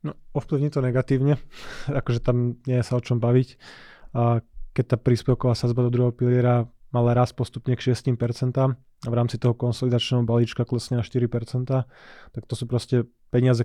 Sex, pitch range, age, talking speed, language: male, 120-125 Hz, 20-39, 170 wpm, Slovak